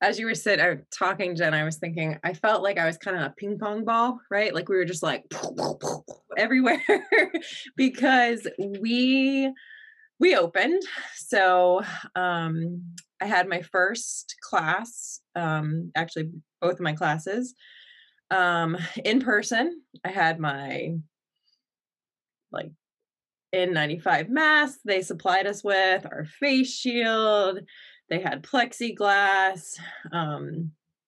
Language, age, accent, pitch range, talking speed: English, 20-39, American, 165-245 Hz, 130 wpm